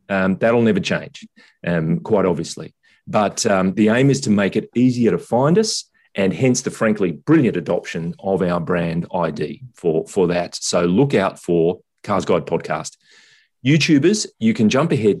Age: 30-49